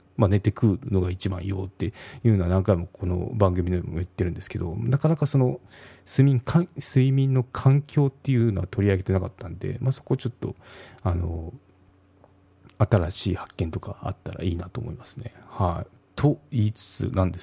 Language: Japanese